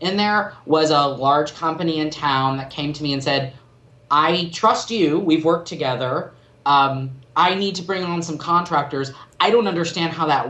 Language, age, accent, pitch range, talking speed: English, 30-49, American, 140-170 Hz, 190 wpm